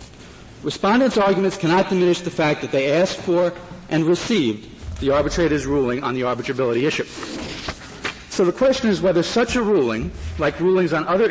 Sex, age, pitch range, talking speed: male, 50-69, 140-185 Hz, 165 wpm